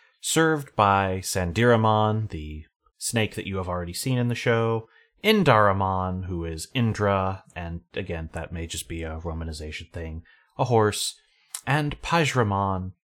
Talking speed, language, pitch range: 140 wpm, English, 95-140 Hz